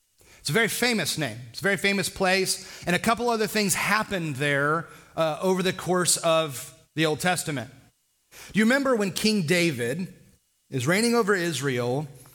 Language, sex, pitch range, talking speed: English, male, 145-185 Hz, 170 wpm